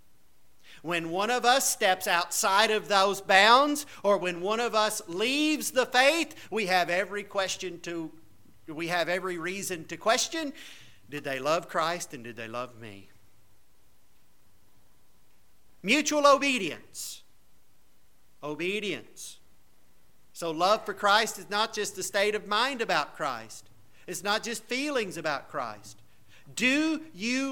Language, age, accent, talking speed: English, 50-69, American, 135 wpm